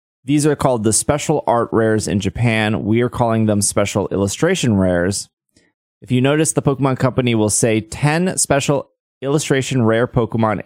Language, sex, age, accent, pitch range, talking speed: English, male, 20-39, American, 100-130 Hz, 165 wpm